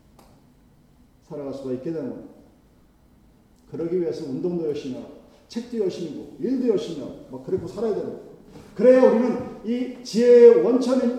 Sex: male